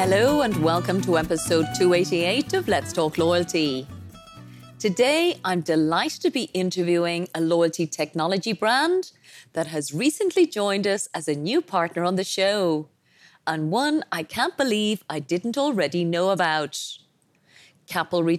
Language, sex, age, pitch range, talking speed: English, female, 30-49, 160-220 Hz, 140 wpm